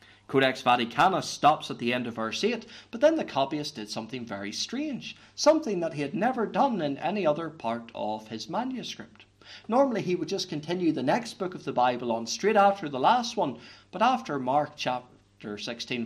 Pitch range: 105-155 Hz